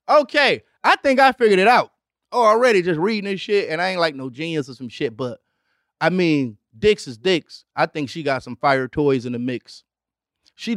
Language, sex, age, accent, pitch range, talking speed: English, male, 30-49, American, 135-175 Hz, 215 wpm